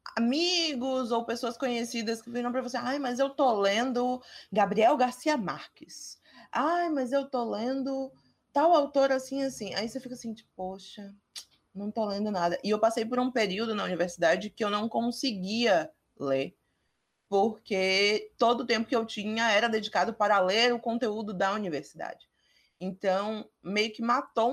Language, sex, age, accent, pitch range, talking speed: Portuguese, female, 20-39, Brazilian, 210-270 Hz, 165 wpm